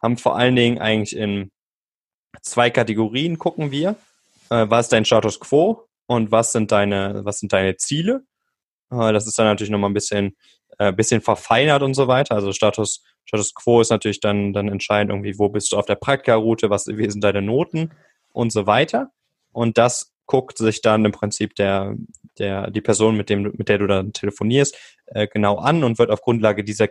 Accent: German